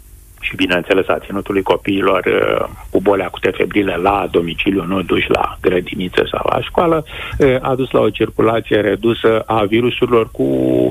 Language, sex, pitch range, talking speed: Romanian, male, 95-115 Hz, 150 wpm